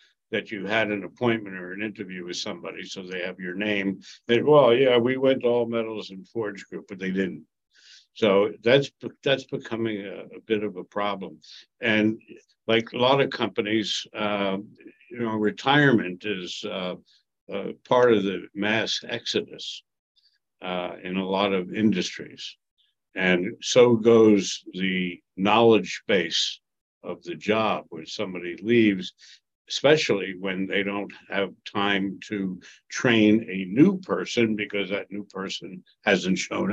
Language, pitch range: English, 95-115 Hz